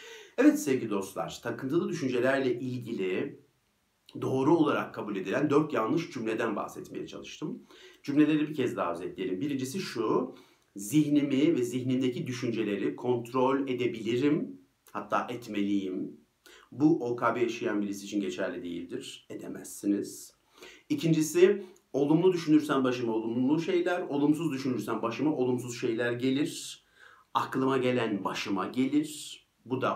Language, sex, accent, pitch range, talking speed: Turkish, male, native, 110-155 Hz, 110 wpm